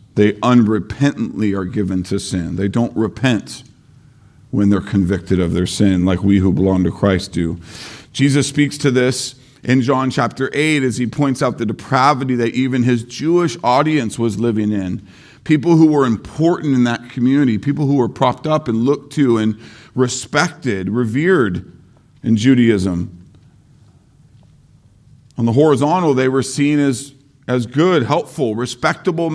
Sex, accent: male, American